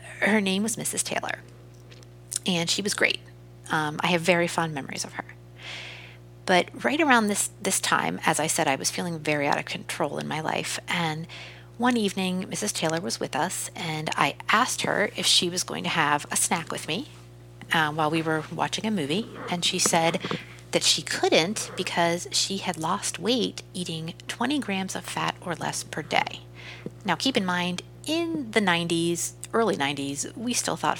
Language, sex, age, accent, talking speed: English, female, 40-59, American, 190 wpm